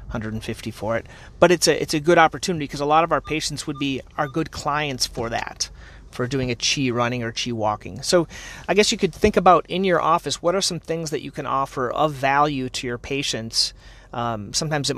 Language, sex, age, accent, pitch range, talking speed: English, male, 30-49, American, 120-150 Hz, 230 wpm